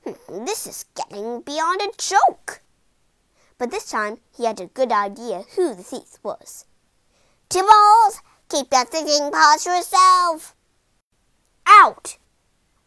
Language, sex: Chinese, female